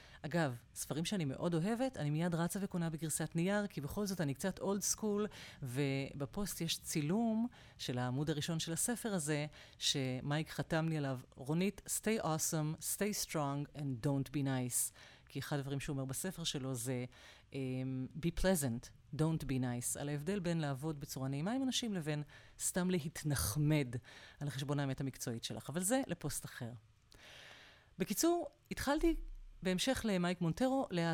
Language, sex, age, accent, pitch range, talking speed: Hebrew, female, 30-49, native, 140-180 Hz, 150 wpm